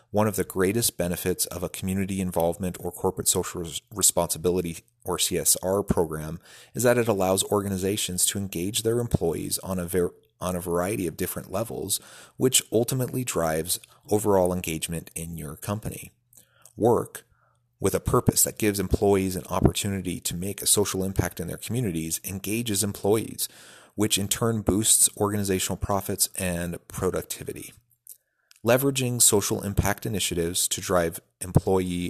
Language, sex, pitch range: English, male, 90-105 Hz